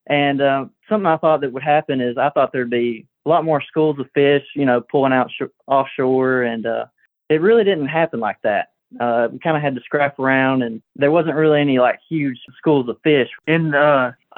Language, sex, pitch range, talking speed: English, male, 130-155 Hz, 225 wpm